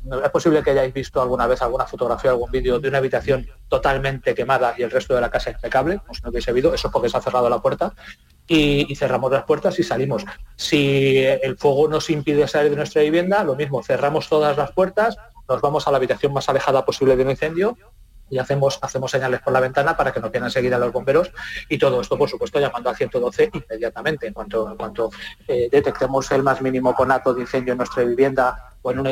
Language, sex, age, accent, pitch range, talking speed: Spanish, male, 30-49, Spanish, 130-155 Hz, 225 wpm